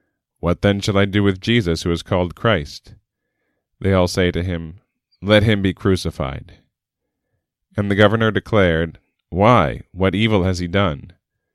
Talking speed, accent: 155 wpm, American